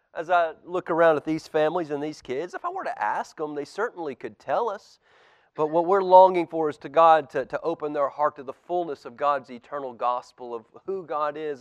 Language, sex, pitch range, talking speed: English, male, 145-195 Hz, 235 wpm